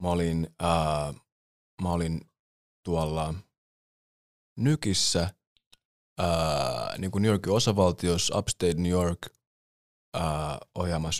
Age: 20-39